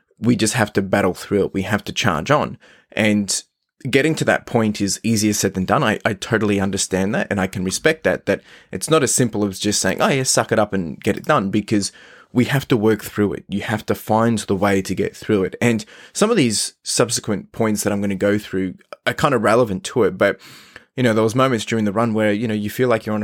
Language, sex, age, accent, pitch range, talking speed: English, male, 20-39, Australian, 100-115 Hz, 260 wpm